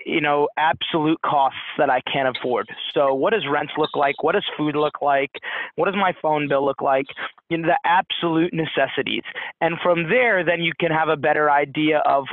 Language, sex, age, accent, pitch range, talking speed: English, male, 20-39, American, 145-175 Hz, 200 wpm